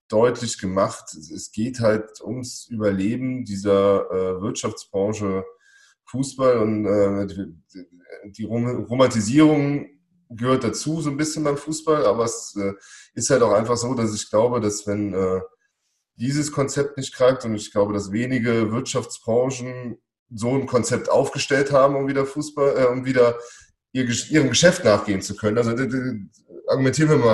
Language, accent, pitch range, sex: German, German, 110-140 Hz, male